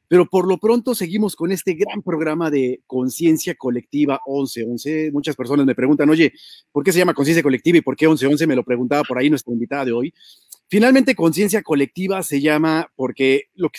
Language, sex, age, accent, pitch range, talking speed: Spanish, male, 40-59, Mexican, 140-185 Hz, 210 wpm